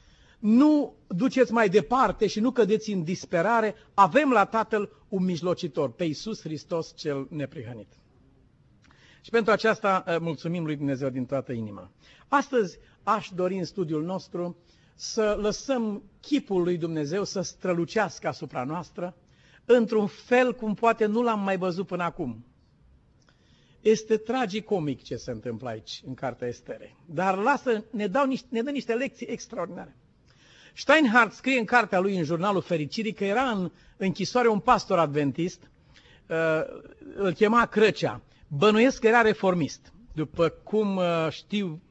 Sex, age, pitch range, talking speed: male, 50-69, 160-220 Hz, 140 wpm